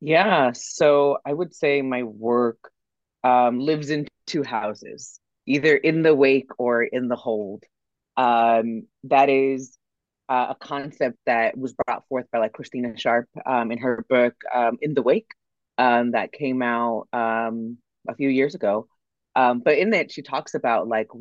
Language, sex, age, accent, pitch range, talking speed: English, female, 30-49, American, 115-135 Hz, 165 wpm